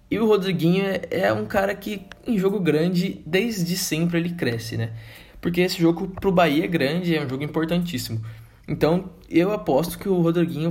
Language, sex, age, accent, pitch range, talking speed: Portuguese, male, 20-39, Brazilian, 125-175 Hz, 180 wpm